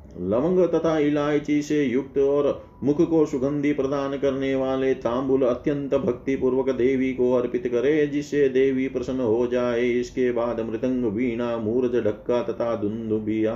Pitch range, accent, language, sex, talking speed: 110-145 Hz, native, Hindi, male, 100 wpm